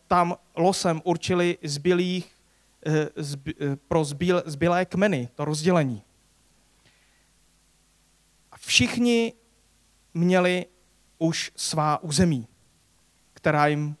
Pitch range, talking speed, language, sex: 110-170 Hz, 75 wpm, Czech, male